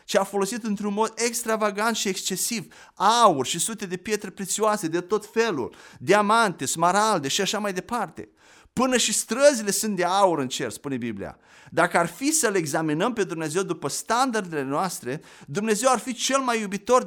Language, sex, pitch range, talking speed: Romanian, male, 175-225 Hz, 175 wpm